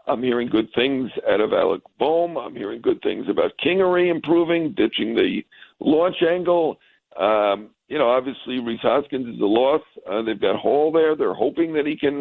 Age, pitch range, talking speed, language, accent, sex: 60-79, 120-160 Hz, 185 wpm, English, American, male